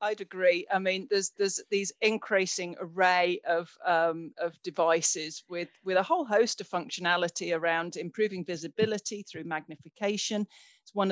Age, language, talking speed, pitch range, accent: 40-59, English, 145 wpm, 170-210 Hz, British